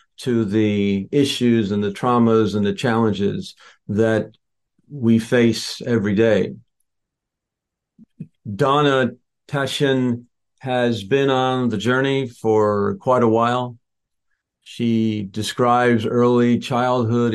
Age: 50-69